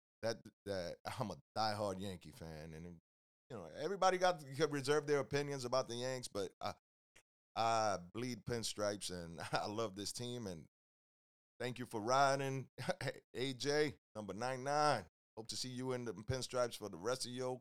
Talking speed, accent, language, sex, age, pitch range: 165 wpm, American, English, male, 30-49, 80-110 Hz